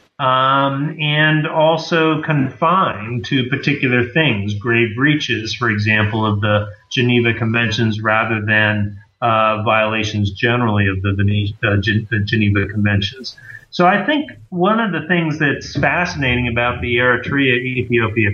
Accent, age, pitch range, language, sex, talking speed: American, 40-59, 110-140 Hz, English, male, 130 wpm